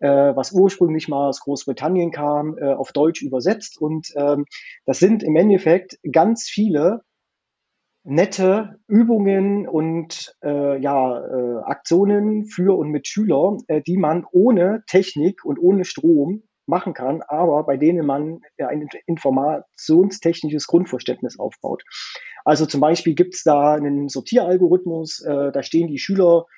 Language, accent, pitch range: German, German, 145-180 Hz